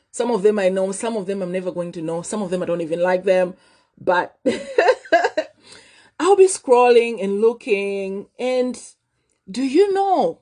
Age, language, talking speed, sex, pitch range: 30-49, English, 180 wpm, female, 195-295 Hz